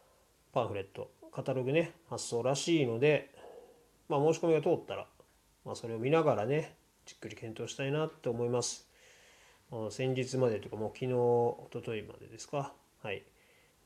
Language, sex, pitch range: Japanese, male, 110-140 Hz